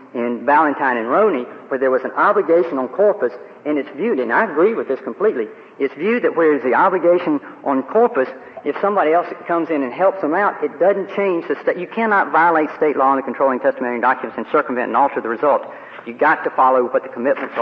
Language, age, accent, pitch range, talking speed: English, 50-69, American, 130-200 Hz, 225 wpm